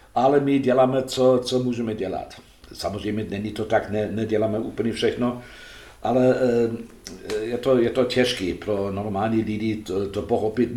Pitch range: 105-120 Hz